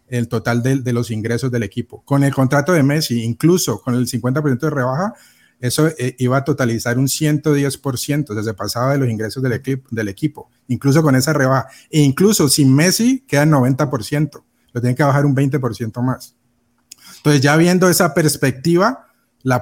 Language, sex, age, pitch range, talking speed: Spanish, male, 30-49, 125-155 Hz, 185 wpm